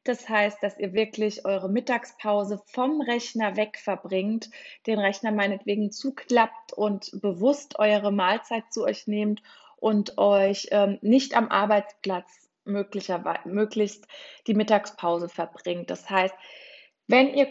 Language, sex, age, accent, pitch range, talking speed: German, female, 20-39, German, 195-230 Hz, 125 wpm